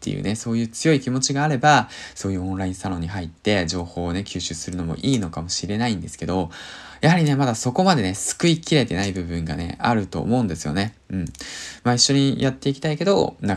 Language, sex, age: Japanese, male, 20-39